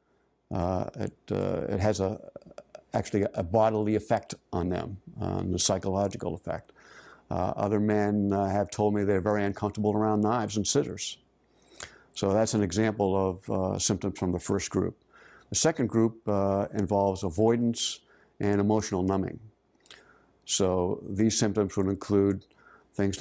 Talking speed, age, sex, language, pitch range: 145 wpm, 60-79, male, English, 95-110 Hz